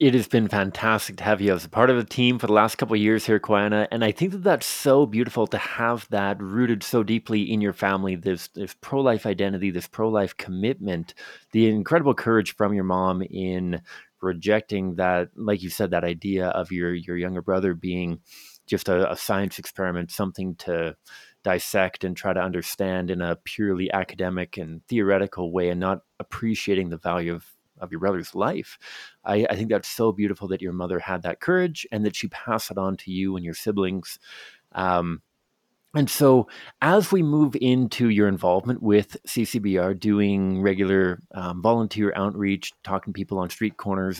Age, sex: 30-49, male